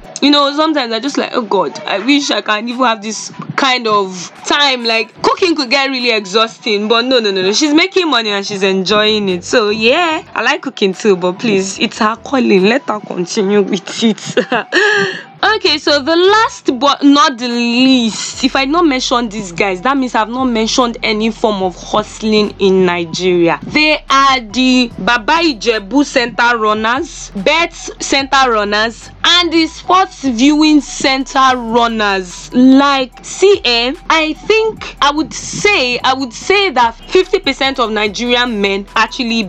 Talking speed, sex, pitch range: 165 wpm, female, 210-285 Hz